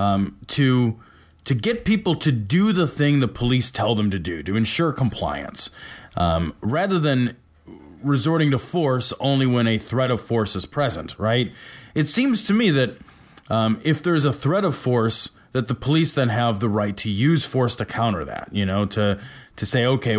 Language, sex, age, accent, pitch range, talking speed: English, male, 20-39, American, 105-135 Hz, 190 wpm